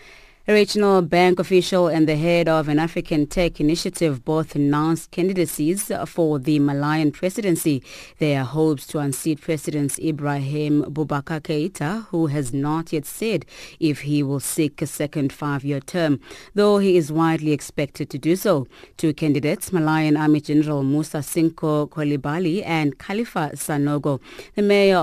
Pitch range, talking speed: 145-170 Hz, 150 wpm